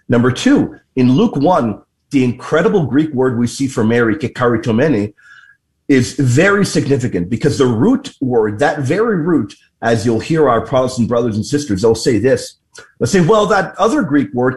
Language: English